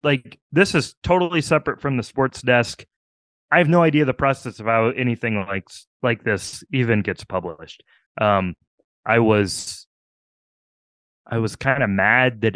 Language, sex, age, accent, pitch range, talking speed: English, male, 20-39, American, 100-135 Hz, 160 wpm